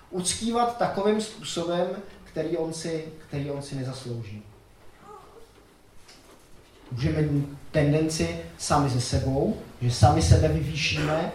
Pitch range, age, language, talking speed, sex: 135-170 Hz, 30-49, Czech, 110 wpm, male